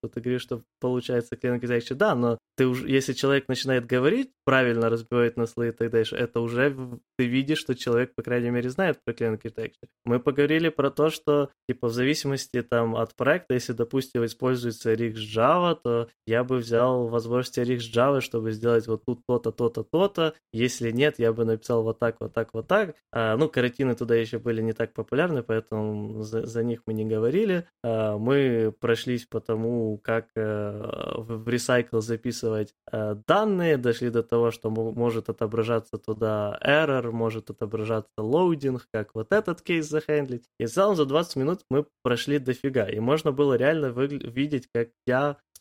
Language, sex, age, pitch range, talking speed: Ukrainian, male, 20-39, 115-135 Hz, 180 wpm